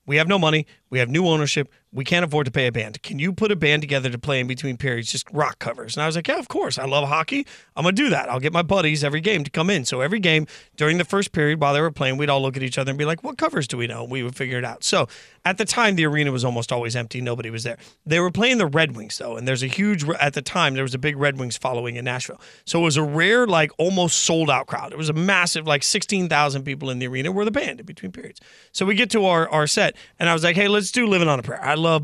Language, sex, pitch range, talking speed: English, male, 140-190 Hz, 310 wpm